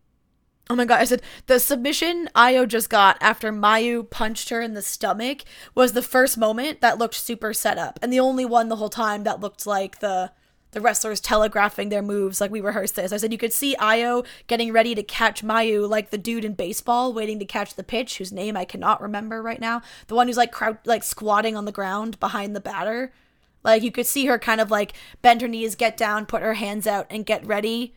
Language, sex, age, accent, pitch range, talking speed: English, female, 20-39, American, 210-240 Hz, 230 wpm